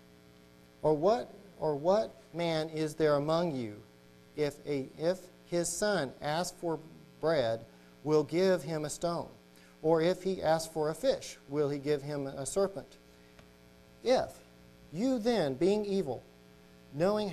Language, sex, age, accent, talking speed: English, male, 40-59, American, 140 wpm